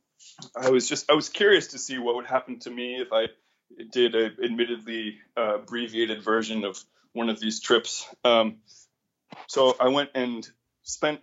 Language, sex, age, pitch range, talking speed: English, male, 20-39, 115-140 Hz, 170 wpm